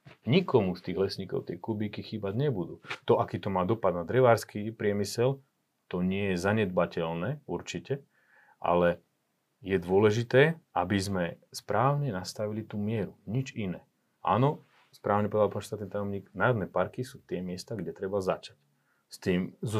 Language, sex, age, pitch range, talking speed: Slovak, male, 30-49, 95-115 Hz, 145 wpm